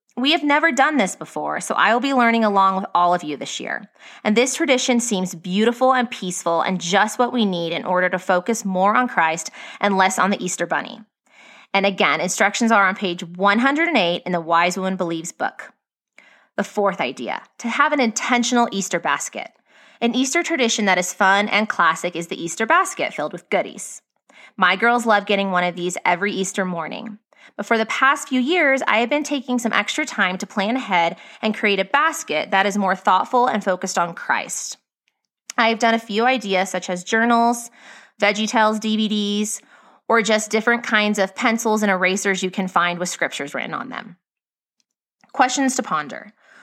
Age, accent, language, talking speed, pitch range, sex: 20-39, American, English, 190 wpm, 185-240 Hz, female